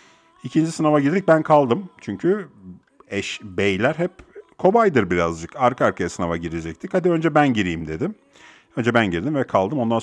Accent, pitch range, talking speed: native, 90-125 Hz, 155 wpm